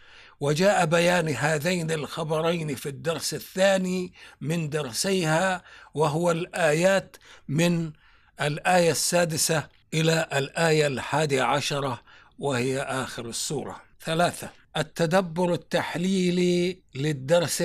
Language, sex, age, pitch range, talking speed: Arabic, male, 60-79, 150-175 Hz, 85 wpm